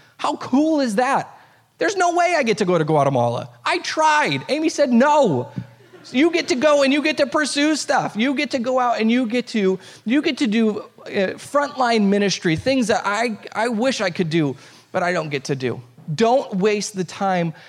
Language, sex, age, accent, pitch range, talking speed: English, male, 30-49, American, 165-235 Hz, 210 wpm